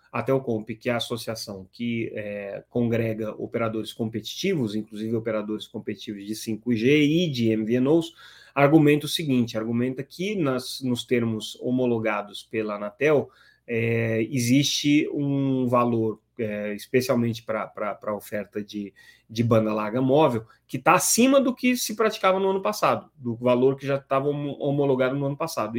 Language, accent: Portuguese, Brazilian